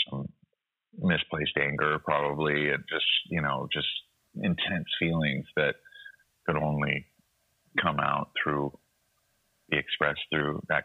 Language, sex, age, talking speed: English, male, 30-49, 115 wpm